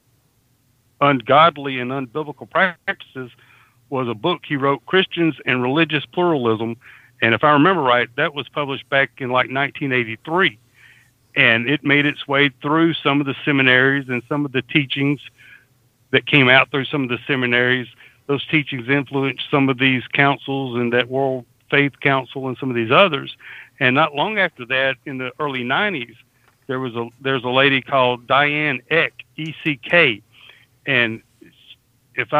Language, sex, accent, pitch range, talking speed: English, male, American, 125-150 Hz, 160 wpm